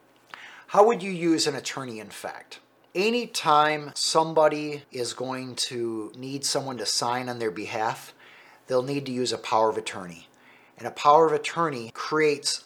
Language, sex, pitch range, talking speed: English, male, 125-175 Hz, 150 wpm